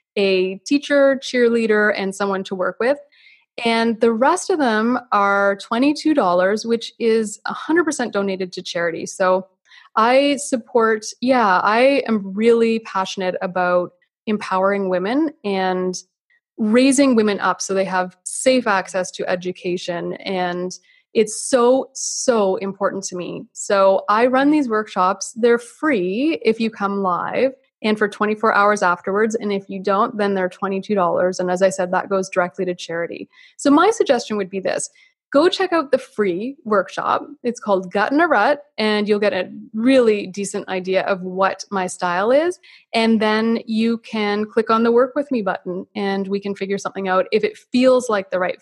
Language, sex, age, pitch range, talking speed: English, female, 20-39, 190-255 Hz, 165 wpm